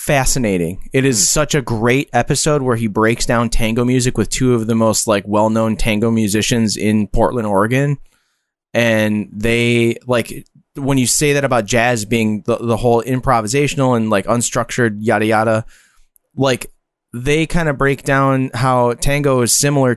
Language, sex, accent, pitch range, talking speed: English, male, American, 110-130 Hz, 160 wpm